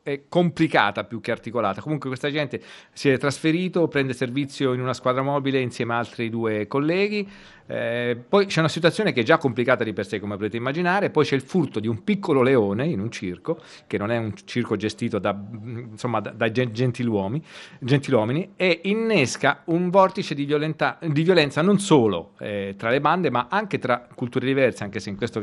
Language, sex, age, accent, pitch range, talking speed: Italian, male, 40-59, native, 115-150 Hz, 195 wpm